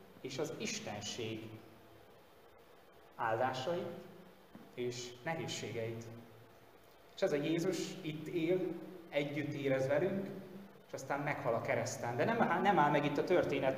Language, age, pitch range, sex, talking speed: Hungarian, 30-49, 120-165 Hz, male, 125 wpm